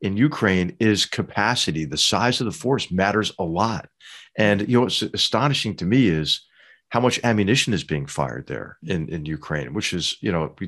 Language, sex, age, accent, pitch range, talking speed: English, male, 50-69, American, 95-120 Hz, 195 wpm